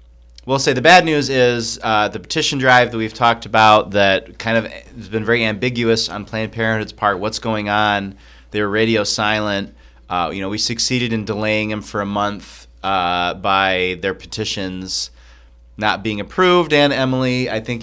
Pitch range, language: 95-115 Hz, English